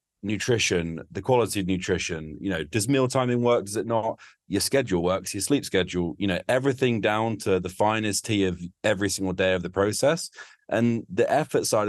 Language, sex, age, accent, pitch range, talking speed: English, male, 30-49, British, 90-110 Hz, 195 wpm